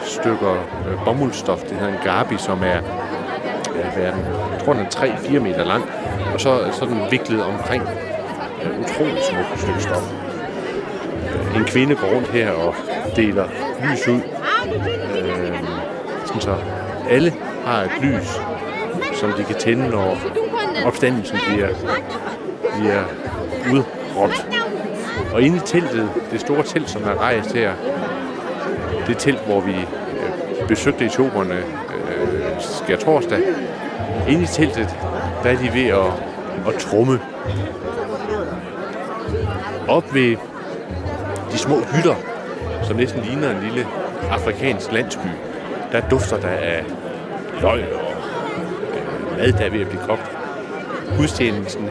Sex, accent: male, native